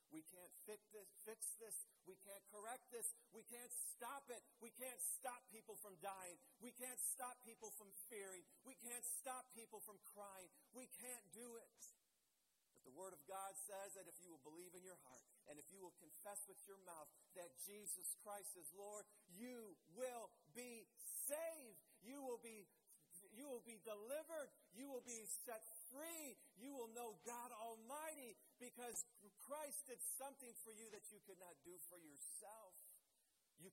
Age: 40-59